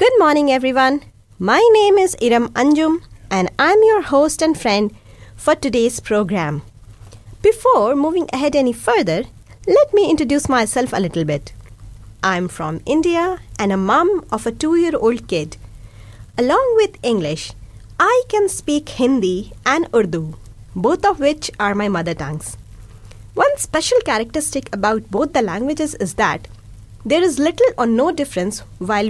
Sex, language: female, Hindi